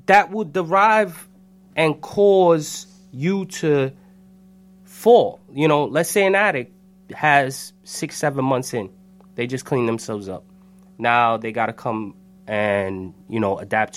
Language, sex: English, male